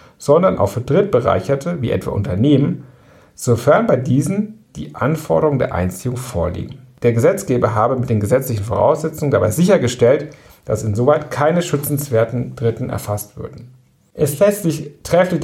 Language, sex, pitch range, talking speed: German, male, 110-140 Hz, 135 wpm